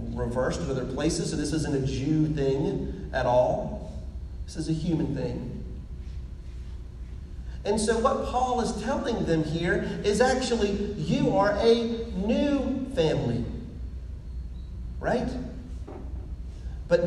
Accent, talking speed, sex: American, 120 wpm, male